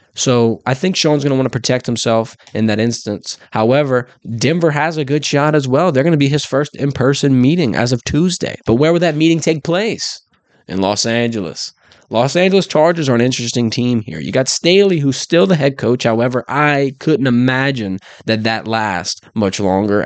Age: 20-39